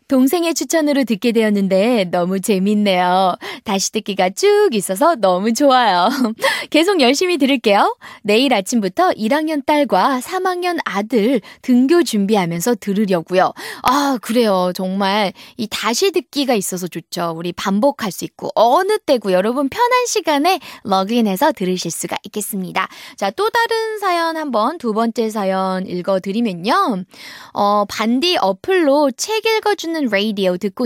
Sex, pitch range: female, 195-320 Hz